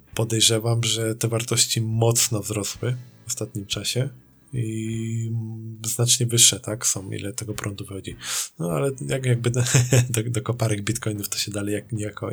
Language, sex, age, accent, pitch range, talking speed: Polish, male, 20-39, native, 100-115 Hz, 155 wpm